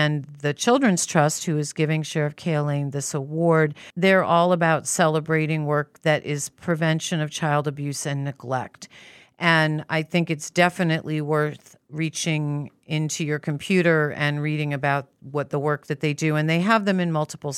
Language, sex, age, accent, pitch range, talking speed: English, female, 40-59, American, 145-160 Hz, 165 wpm